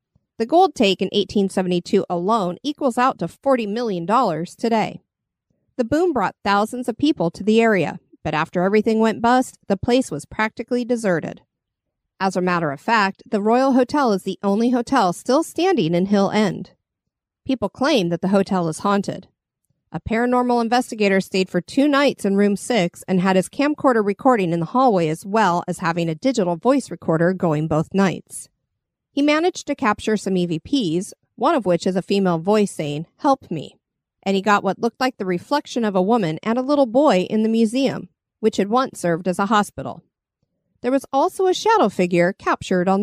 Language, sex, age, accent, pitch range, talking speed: English, female, 40-59, American, 180-250 Hz, 185 wpm